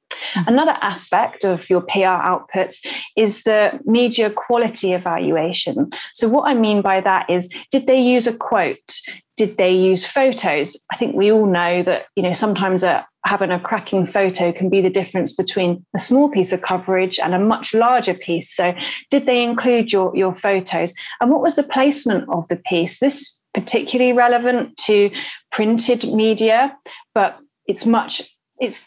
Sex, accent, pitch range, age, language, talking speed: female, British, 185-240 Hz, 30-49, English, 170 wpm